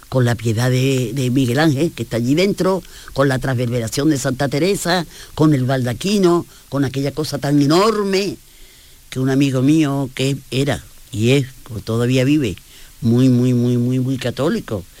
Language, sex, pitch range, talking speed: Spanish, female, 120-155 Hz, 170 wpm